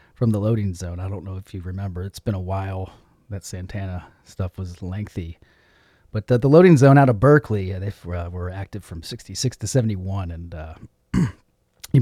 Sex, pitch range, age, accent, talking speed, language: male, 95-130 Hz, 30-49, American, 195 wpm, English